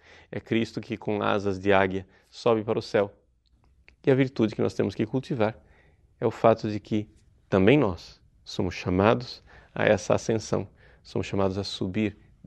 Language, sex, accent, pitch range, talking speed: Portuguese, male, Brazilian, 95-125 Hz, 170 wpm